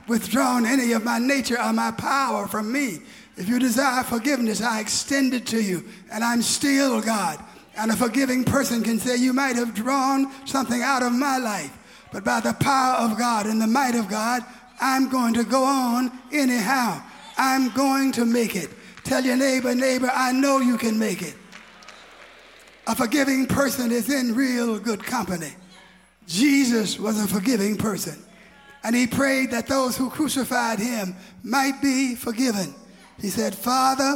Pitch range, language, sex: 220-270 Hz, English, male